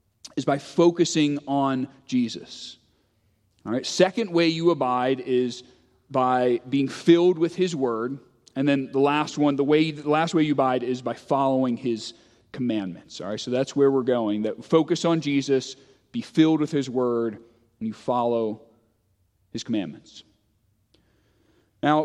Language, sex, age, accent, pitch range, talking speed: English, male, 30-49, American, 125-165 Hz, 155 wpm